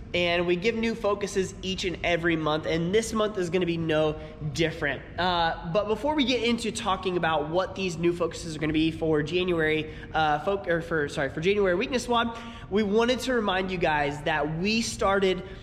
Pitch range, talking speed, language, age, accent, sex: 160-200 Hz, 200 wpm, English, 20-39, American, male